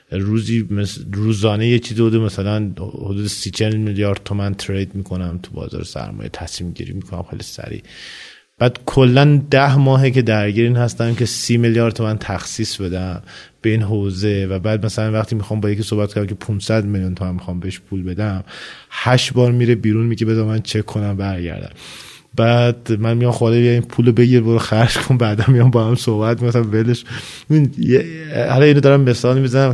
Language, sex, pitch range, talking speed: Persian, male, 105-130 Hz, 175 wpm